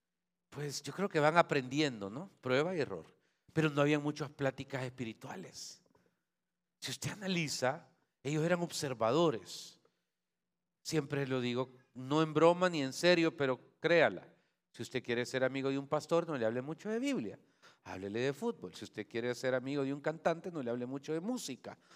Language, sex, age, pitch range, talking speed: Spanish, male, 40-59, 130-180 Hz, 175 wpm